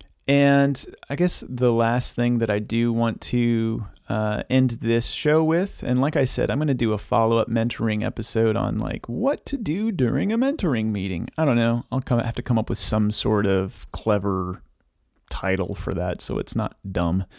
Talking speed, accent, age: 200 wpm, American, 30-49